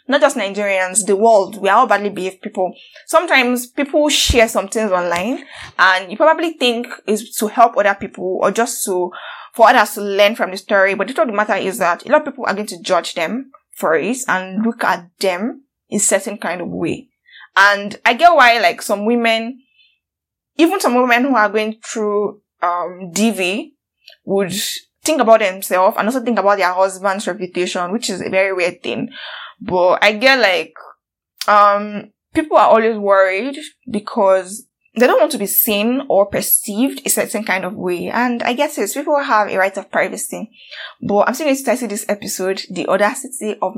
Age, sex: 10-29, female